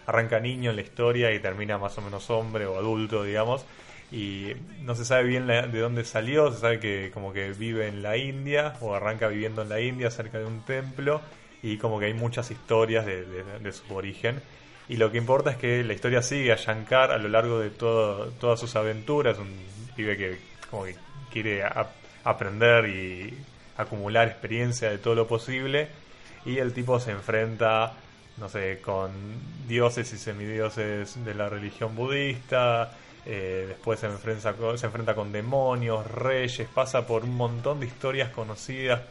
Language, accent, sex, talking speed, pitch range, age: Spanish, Argentinian, male, 175 wpm, 110-125 Hz, 20-39